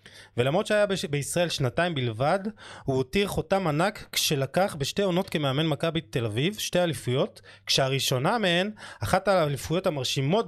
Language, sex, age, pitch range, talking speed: Hebrew, male, 20-39, 125-175 Hz, 130 wpm